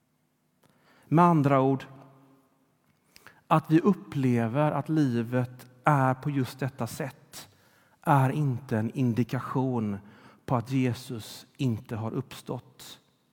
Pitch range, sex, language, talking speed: 115-145 Hz, male, Swedish, 105 wpm